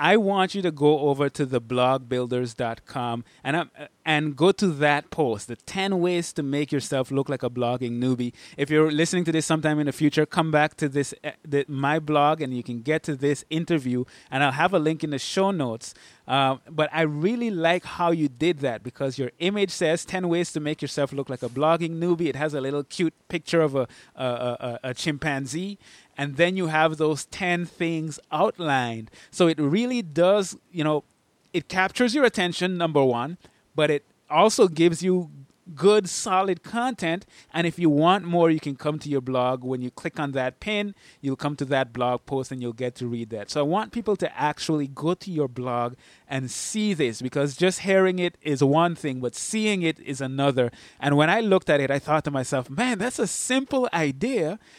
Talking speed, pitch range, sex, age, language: 210 wpm, 135-175 Hz, male, 20-39, English